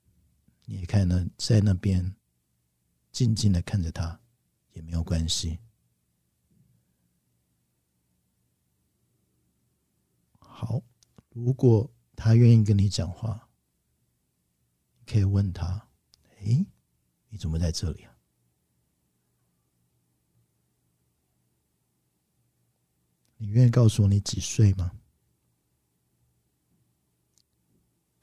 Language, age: Chinese, 50-69